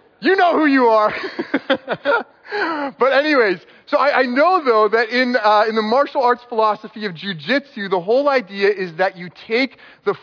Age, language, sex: 30-49, English, male